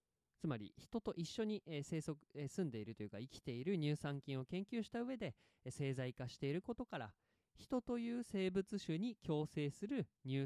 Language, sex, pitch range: Japanese, male, 130-205 Hz